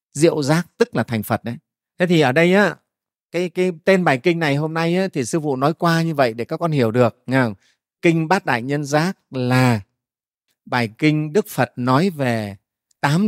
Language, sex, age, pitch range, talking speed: Vietnamese, male, 30-49, 115-155 Hz, 210 wpm